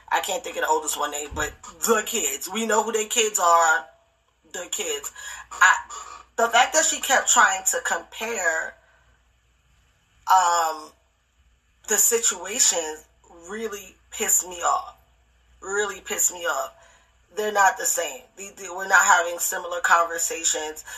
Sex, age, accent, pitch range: female, 20-39, American, 170-285 Hz